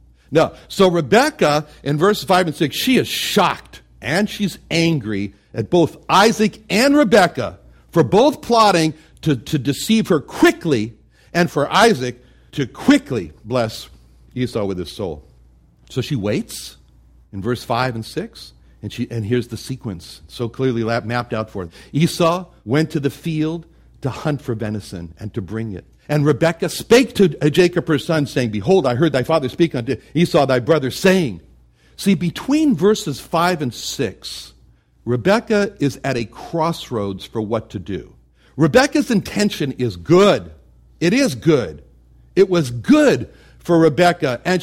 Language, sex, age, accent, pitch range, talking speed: English, male, 60-79, American, 110-175 Hz, 155 wpm